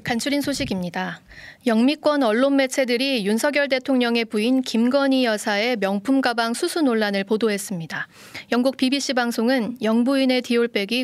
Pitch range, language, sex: 215-265 Hz, Korean, female